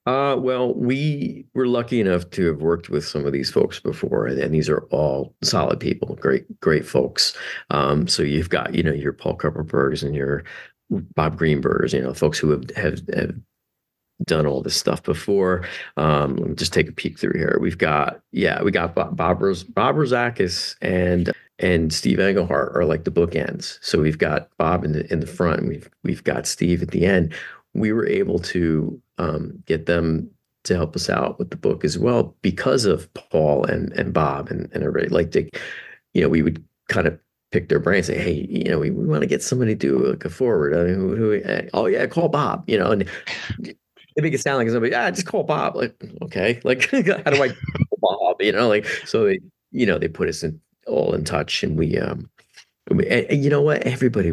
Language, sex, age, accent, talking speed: English, male, 40-59, American, 220 wpm